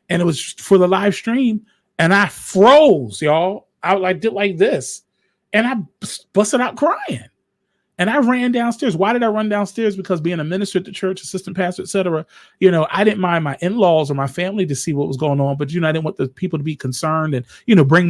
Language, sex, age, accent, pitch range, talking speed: English, male, 30-49, American, 165-225 Hz, 235 wpm